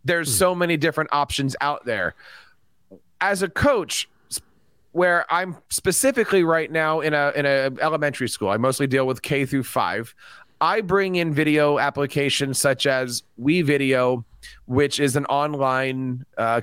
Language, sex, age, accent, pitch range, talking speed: English, male, 30-49, American, 135-160 Hz, 150 wpm